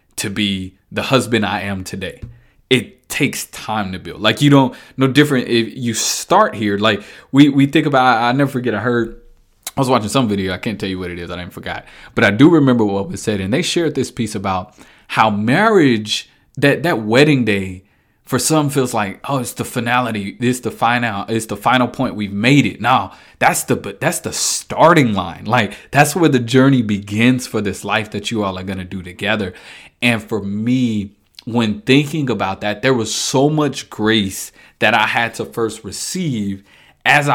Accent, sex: American, male